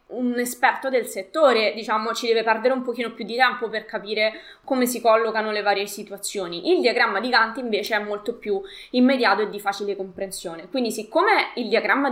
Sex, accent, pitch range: female, native, 210-280 Hz